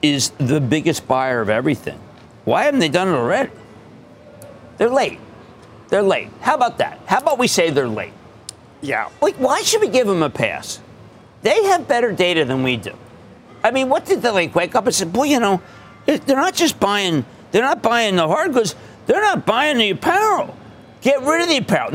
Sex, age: male, 50-69